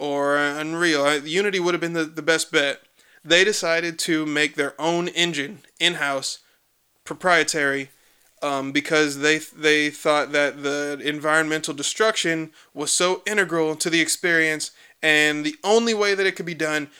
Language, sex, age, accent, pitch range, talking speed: English, male, 20-39, American, 150-185 Hz, 150 wpm